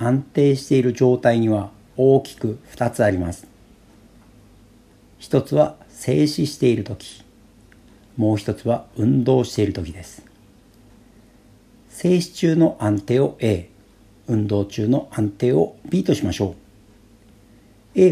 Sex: male